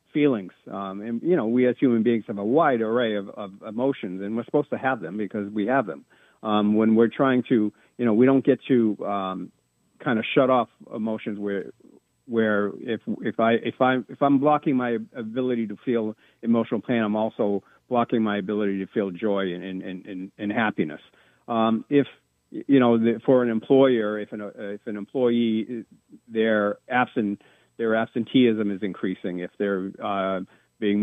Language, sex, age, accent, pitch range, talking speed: English, male, 50-69, American, 105-125 Hz, 185 wpm